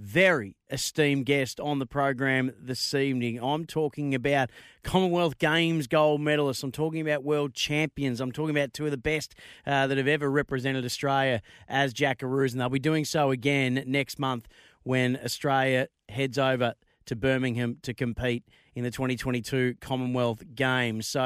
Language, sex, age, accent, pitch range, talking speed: English, male, 30-49, Australian, 130-150 Hz, 160 wpm